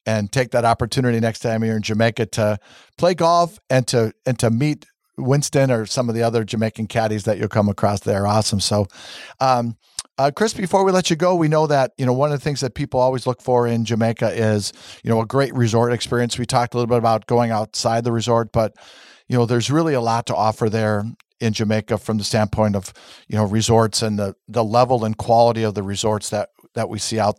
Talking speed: 235 wpm